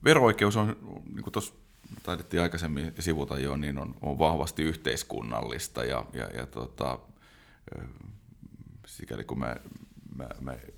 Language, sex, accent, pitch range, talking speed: Finnish, male, native, 70-80 Hz, 110 wpm